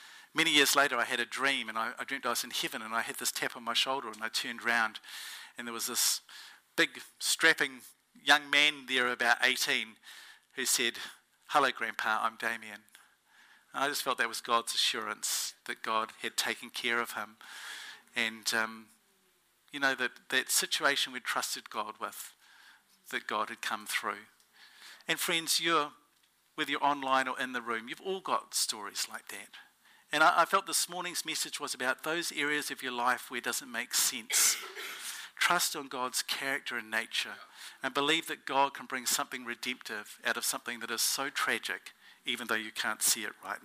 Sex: male